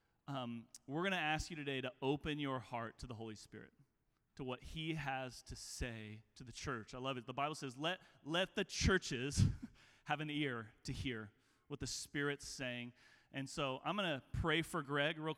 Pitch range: 120-140 Hz